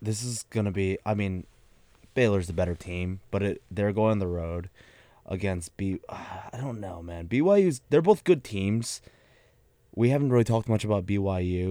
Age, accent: 20-39, American